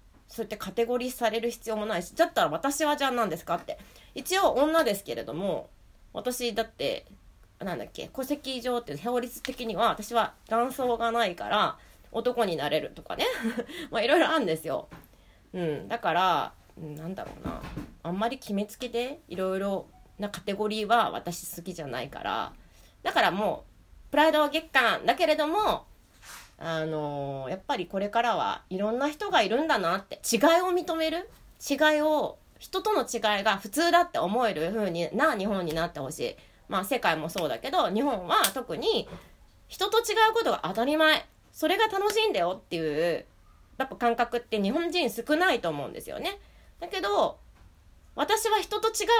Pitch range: 200-320 Hz